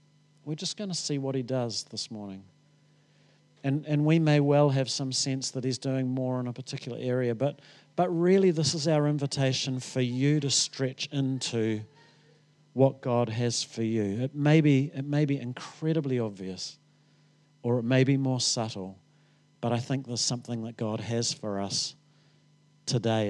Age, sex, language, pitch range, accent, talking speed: 40-59, male, English, 115-150 Hz, Australian, 175 wpm